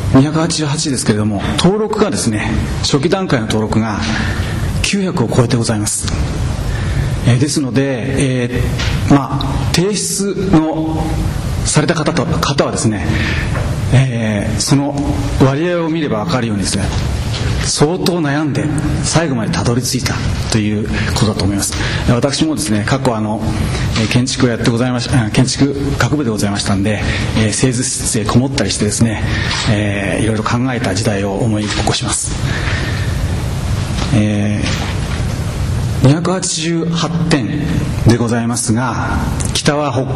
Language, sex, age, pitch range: Japanese, male, 40-59, 110-135 Hz